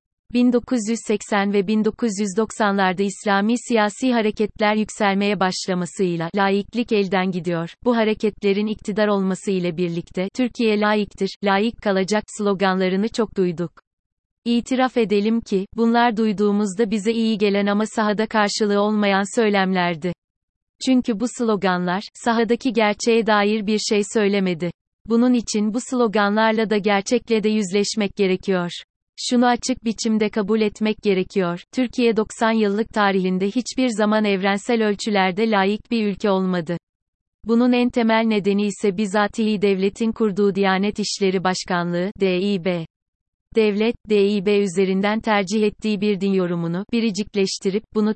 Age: 30-49